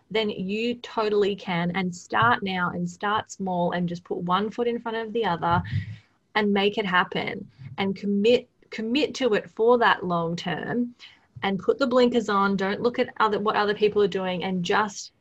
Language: English